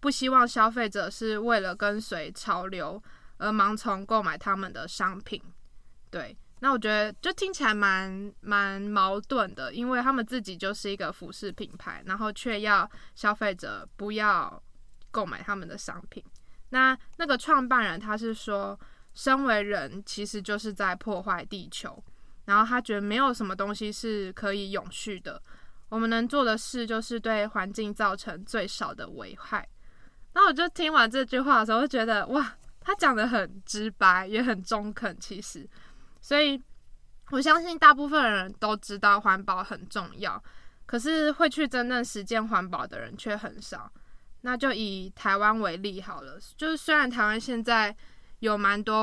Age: 10-29